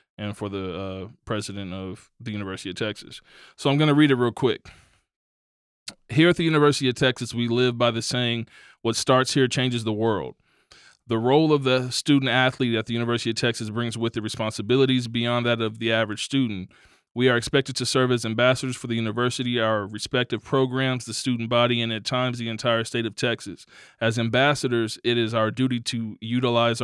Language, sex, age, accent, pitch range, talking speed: English, male, 20-39, American, 110-125 Hz, 195 wpm